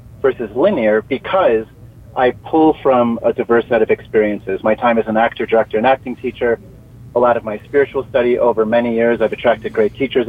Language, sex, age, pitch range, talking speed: English, male, 30-49, 115-135 Hz, 190 wpm